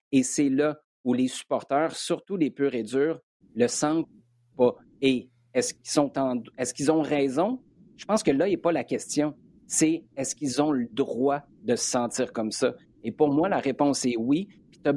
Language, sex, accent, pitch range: French, male, Canadian, 130-170 Hz